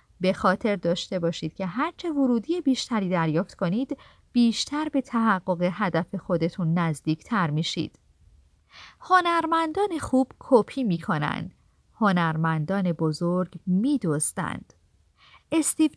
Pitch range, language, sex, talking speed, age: 180-275 Hz, Persian, female, 105 wpm, 40-59